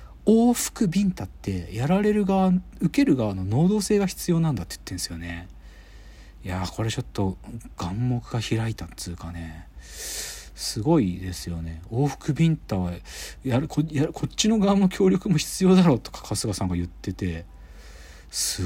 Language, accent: Japanese, native